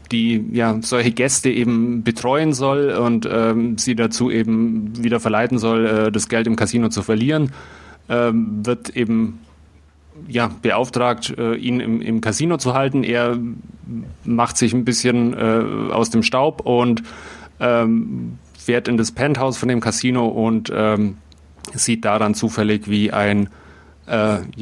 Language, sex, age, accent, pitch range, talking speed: German, male, 30-49, German, 110-125 Hz, 145 wpm